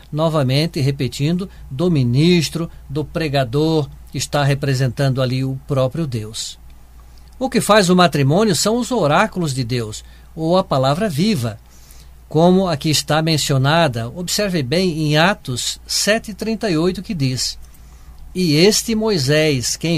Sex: male